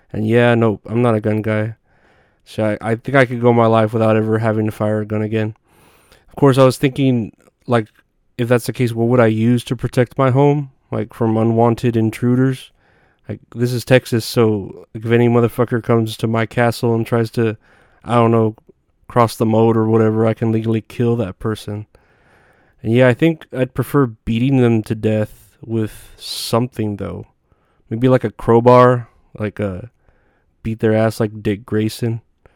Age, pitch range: 20-39, 110-120 Hz